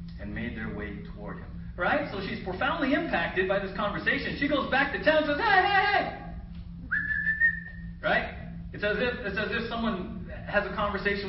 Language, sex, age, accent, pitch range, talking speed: English, male, 40-59, American, 120-205 Hz, 175 wpm